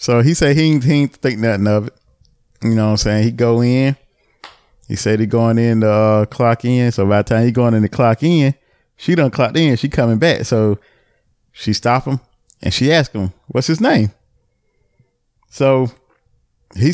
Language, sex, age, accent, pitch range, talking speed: English, male, 20-39, American, 110-145 Hz, 205 wpm